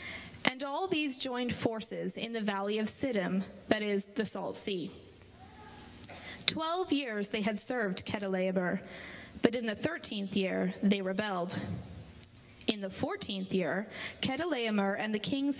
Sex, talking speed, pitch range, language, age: female, 140 wpm, 195-250 Hz, English, 20-39